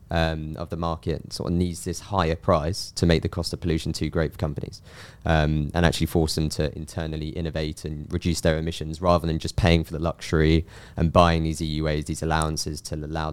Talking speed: 210 wpm